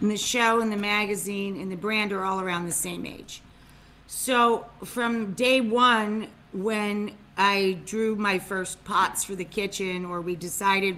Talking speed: 160 wpm